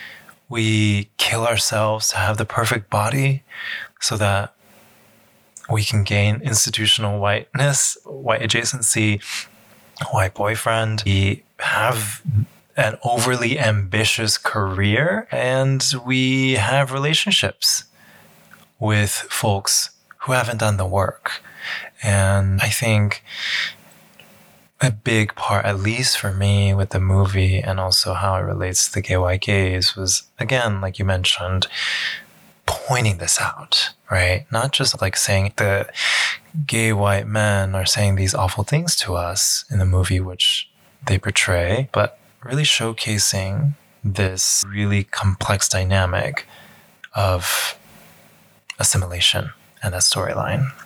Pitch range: 95-120 Hz